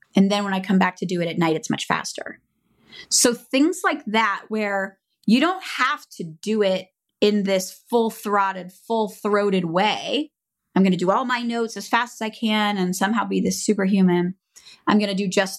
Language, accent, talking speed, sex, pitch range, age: English, American, 200 wpm, female, 180-220 Hz, 30-49